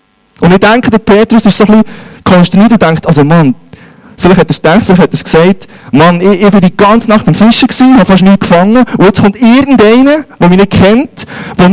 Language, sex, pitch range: German, male, 155-215 Hz